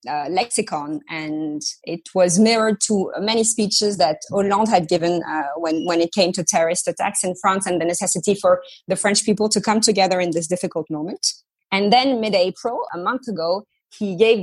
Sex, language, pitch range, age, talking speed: female, English, 180-215 Hz, 20-39, 185 wpm